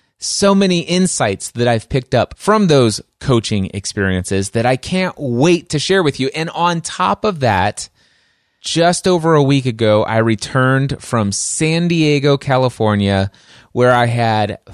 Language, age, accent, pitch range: English, 30-49, American, 105-140 Hz